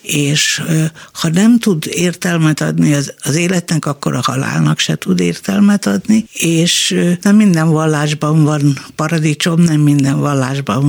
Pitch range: 150-180 Hz